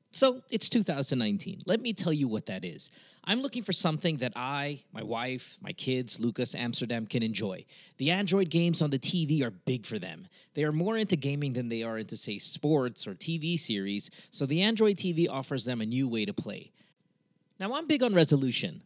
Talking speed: 205 wpm